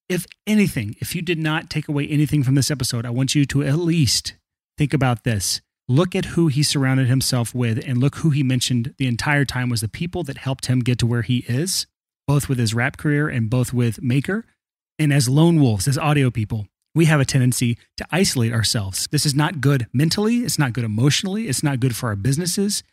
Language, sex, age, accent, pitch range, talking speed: English, male, 30-49, American, 125-155 Hz, 220 wpm